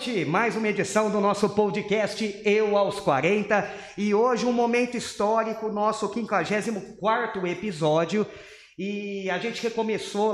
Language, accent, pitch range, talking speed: Portuguese, Brazilian, 165-205 Hz, 120 wpm